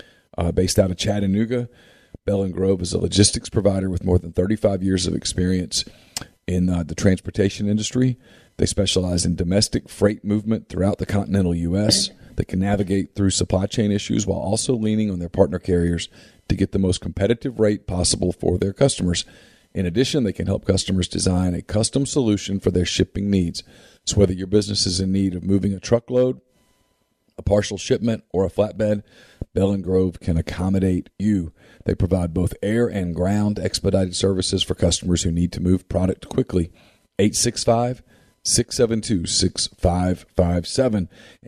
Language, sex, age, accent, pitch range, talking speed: English, male, 40-59, American, 90-105 Hz, 160 wpm